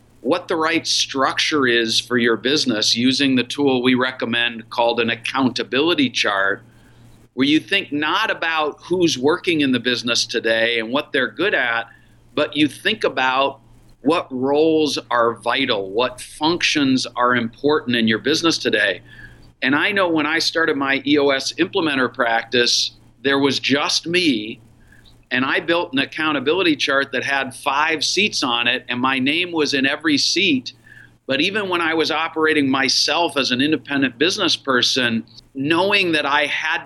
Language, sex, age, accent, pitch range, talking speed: English, male, 50-69, American, 120-155 Hz, 160 wpm